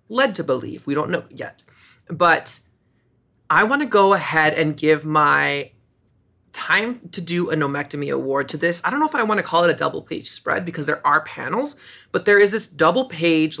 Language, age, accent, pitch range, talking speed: English, 20-39, American, 145-175 Hz, 205 wpm